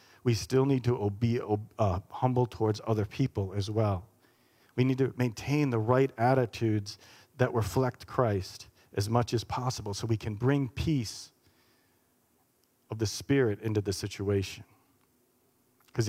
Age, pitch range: 40-59, 110-135 Hz